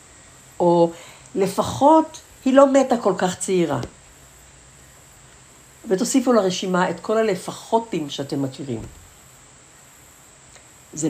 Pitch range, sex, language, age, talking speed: 130-205 Hz, female, Hebrew, 60-79, 85 wpm